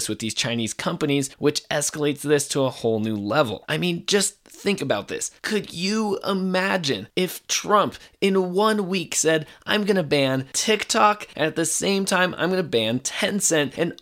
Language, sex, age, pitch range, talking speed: English, male, 20-39, 130-185 Hz, 185 wpm